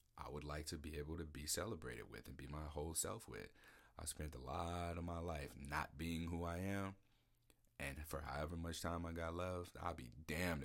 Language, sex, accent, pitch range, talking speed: English, male, American, 70-85 Hz, 220 wpm